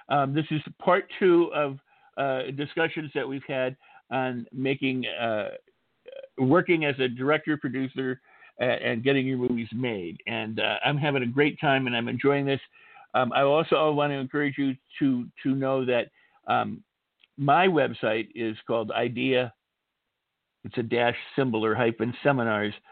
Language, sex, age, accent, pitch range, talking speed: English, male, 50-69, American, 115-140 Hz, 155 wpm